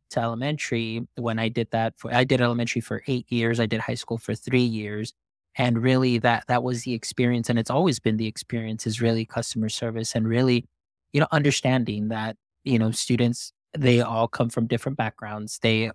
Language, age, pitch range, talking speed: English, 20-39, 115-135 Hz, 200 wpm